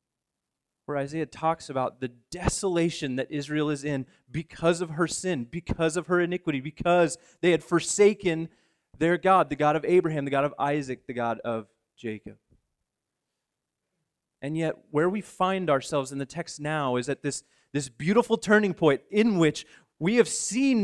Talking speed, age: 165 wpm, 30-49